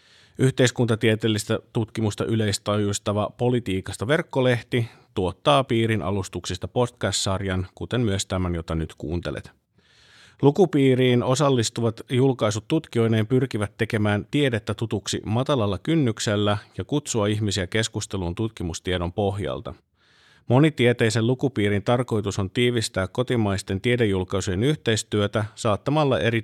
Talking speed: 95 wpm